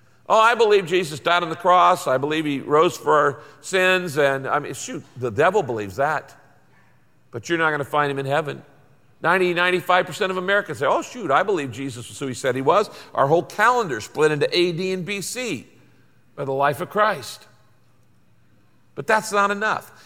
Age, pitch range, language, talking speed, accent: 50-69, 140-185 Hz, English, 190 wpm, American